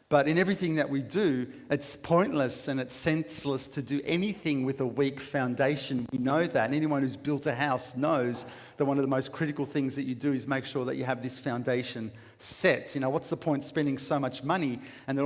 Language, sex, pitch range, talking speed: English, male, 130-155 Hz, 230 wpm